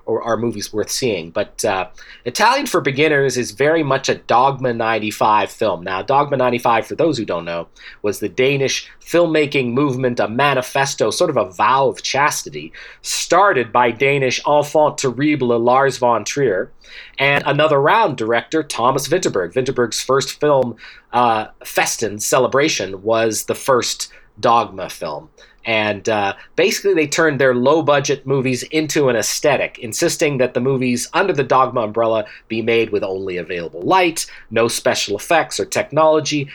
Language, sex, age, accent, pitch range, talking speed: English, male, 30-49, American, 115-145 Hz, 155 wpm